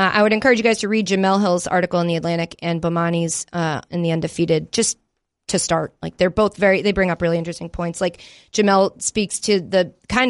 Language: English